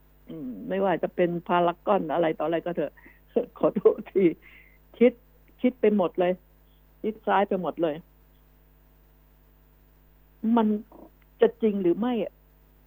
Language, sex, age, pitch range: Thai, female, 60-79, 175-255 Hz